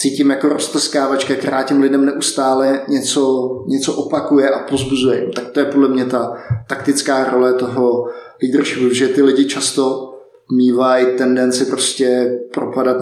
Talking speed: 140 wpm